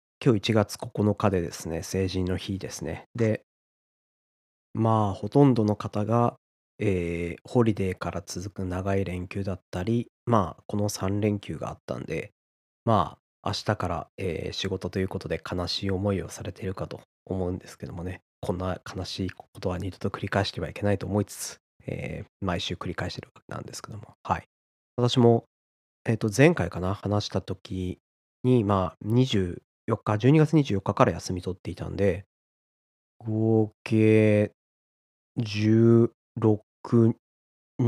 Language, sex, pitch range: Japanese, male, 90-110 Hz